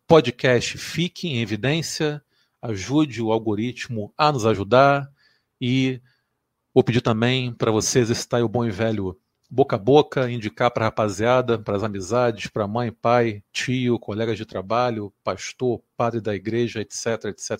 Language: Portuguese